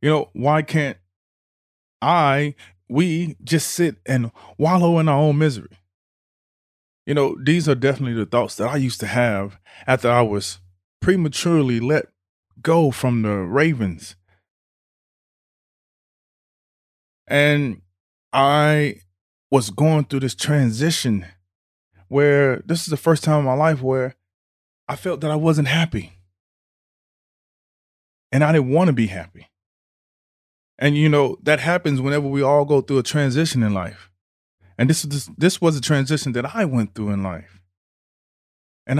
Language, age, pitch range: English, 30-49, 95-150 Hz